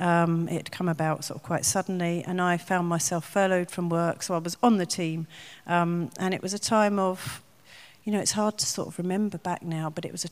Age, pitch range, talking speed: 40-59, 165-190 Hz, 250 wpm